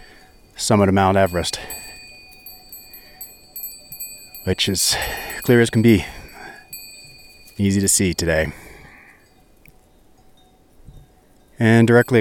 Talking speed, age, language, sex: 80 wpm, 30-49, English, male